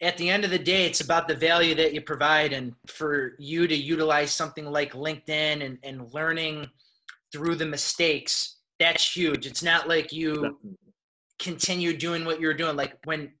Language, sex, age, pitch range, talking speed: English, male, 20-39, 145-170 Hz, 180 wpm